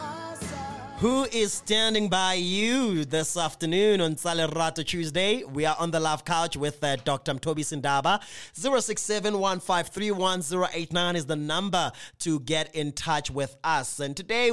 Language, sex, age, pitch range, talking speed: English, male, 20-39, 140-180 Hz, 135 wpm